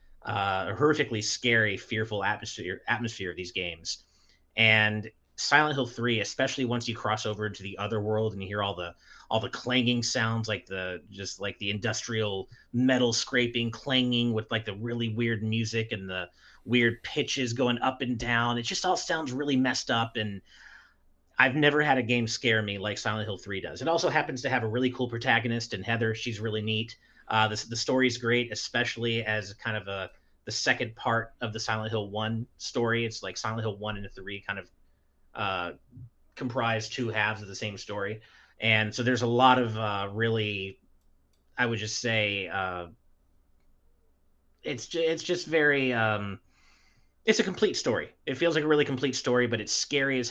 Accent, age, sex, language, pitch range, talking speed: American, 30-49, male, English, 100-125 Hz, 190 wpm